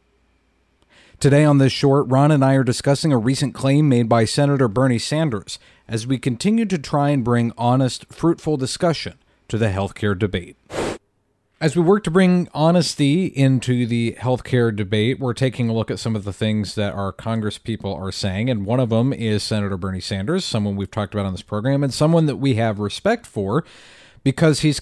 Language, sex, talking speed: English, male, 195 wpm